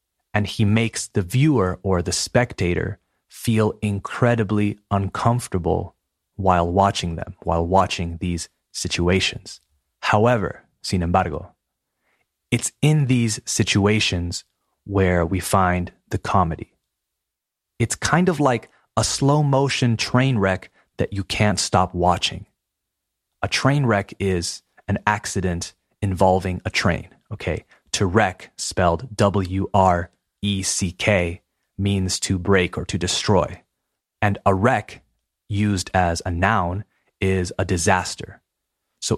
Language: Spanish